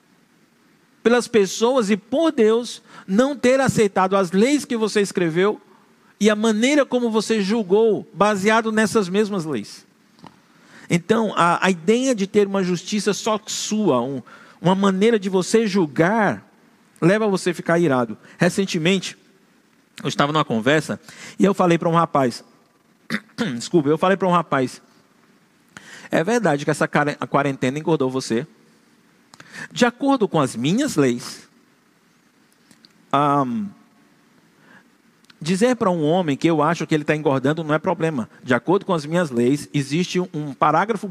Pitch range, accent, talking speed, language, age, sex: 155-220 Hz, Brazilian, 145 wpm, Portuguese, 50-69, male